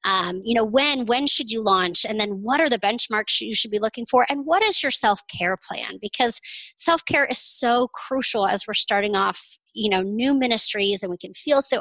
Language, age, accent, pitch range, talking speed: English, 30-49, American, 210-265 Hz, 220 wpm